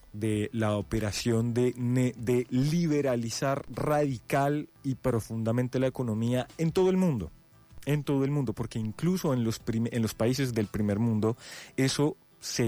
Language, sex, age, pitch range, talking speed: Spanish, male, 30-49, 105-135 Hz, 150 wpm